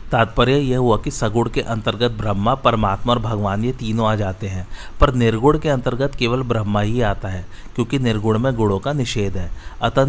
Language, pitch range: Hindi, 105-125 Hz